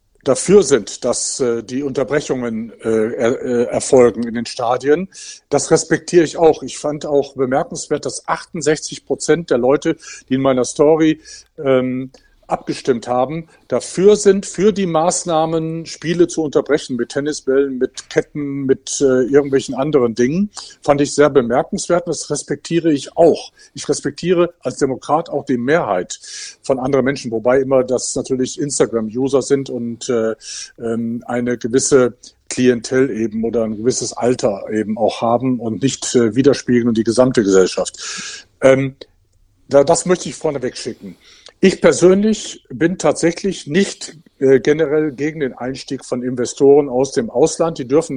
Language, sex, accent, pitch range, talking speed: German, male, German, 125-160 Hz, 150 wpm